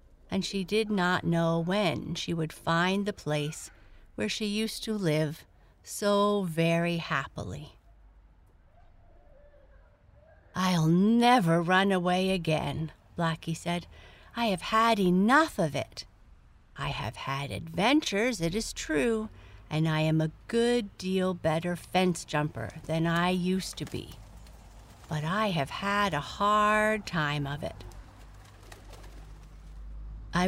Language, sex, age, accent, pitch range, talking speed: English, female, 50-69, American, 150-205 Hz, 125 wpm